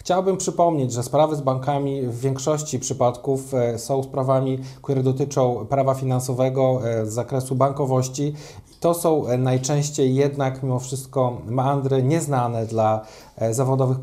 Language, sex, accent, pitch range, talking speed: Polish, male, native, 125-145 Hz, 120 wpm